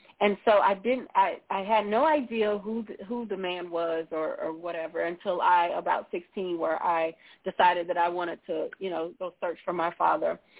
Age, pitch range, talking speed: 40-59, 175-220 Hz, 200 wpm